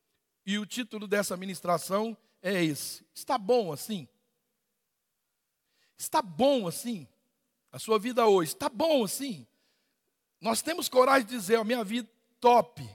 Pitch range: 185-235 Hz